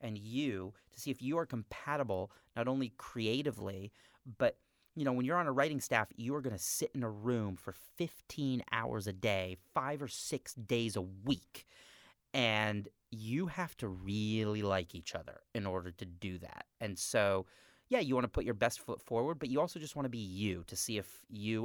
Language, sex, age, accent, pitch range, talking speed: English, male, 30-49, American, 95-125 Hz, 210 wpm